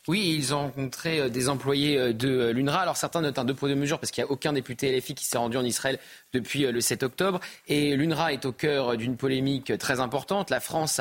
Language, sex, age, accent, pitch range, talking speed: French, male, 30-49, French, 135-170 Hz, 235 wpm